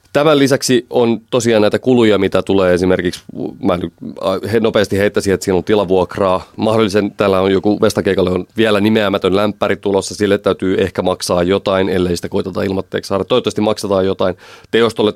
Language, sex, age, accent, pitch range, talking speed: Finnish, male, 30-49, native, 95-110 Hz, 155 wpm